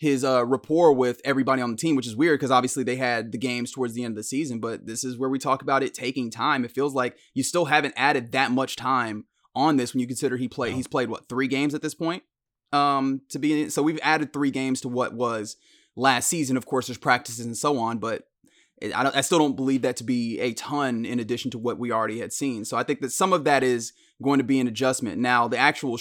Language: English